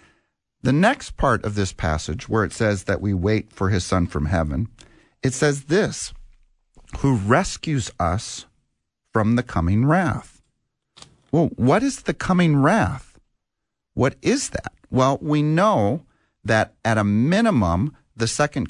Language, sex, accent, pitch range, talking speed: English, male, American, 95-130 Hz, 145 wpm